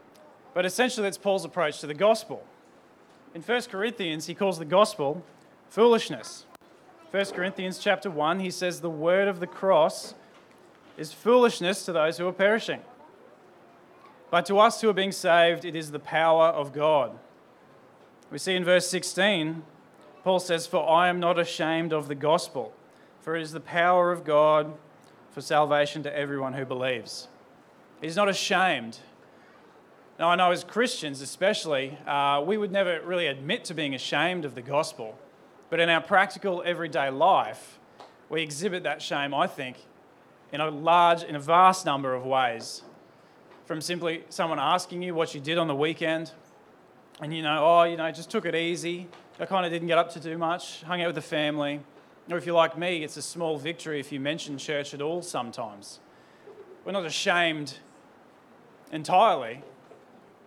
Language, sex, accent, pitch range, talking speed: English, male, Australian, 150-185 Hz, 170 wpm